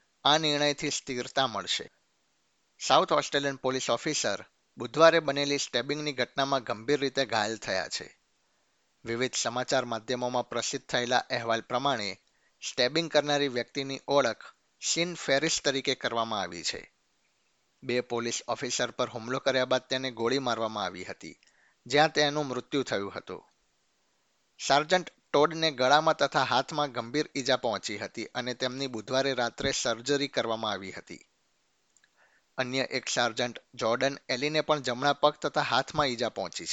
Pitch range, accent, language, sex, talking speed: 120-145 Hz, native, Gujarati, male, 110 wpm